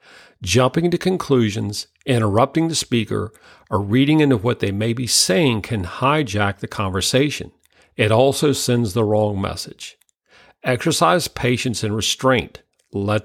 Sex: male